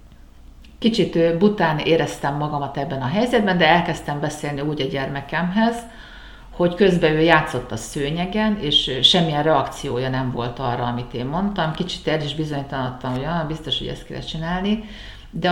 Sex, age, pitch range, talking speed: female, 50-69, 135-175 Hz, 155 wpm